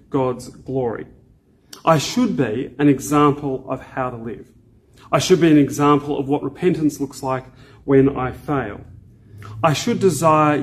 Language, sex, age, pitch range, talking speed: English, male, 40-59, 130-160 Hz, 150 wpm